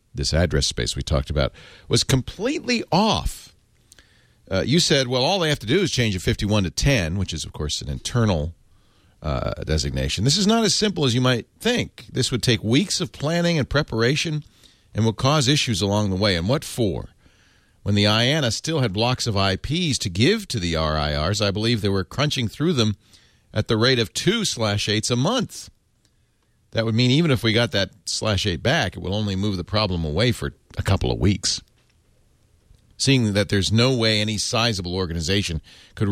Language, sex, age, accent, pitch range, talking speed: English, male, 50-69, American, 90-120 Hz, 195 wpm